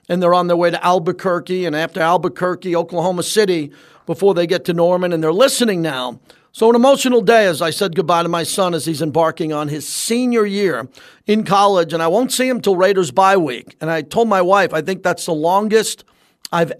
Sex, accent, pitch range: male, American, 165-200 Hz